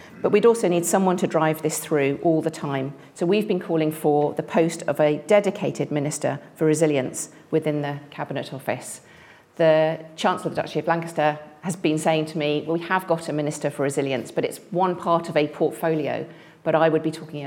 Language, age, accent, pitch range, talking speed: English, 40-59, British, 145-175 Hz, 205 wpm